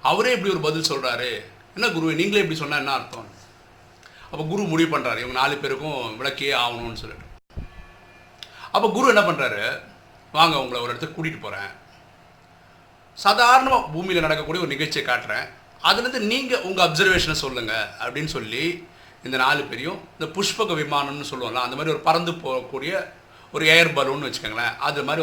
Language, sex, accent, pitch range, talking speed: Tamil, male, native, 125-185 Hz, 145 wpm